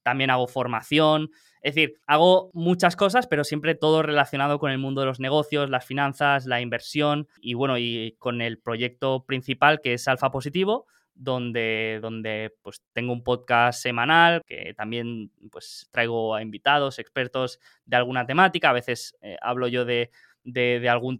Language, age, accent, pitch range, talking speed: Spanish, 20-39, Spanish, 120-145 Hz, 165 wpm